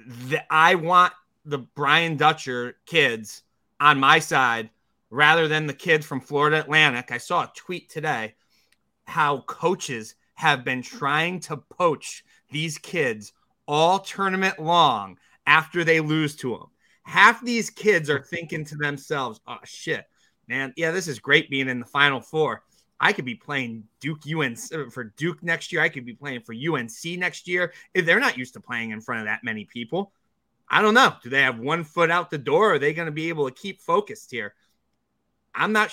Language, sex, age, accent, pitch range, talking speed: English, male, 30-49, American, 125-170 Hz, 185 wpm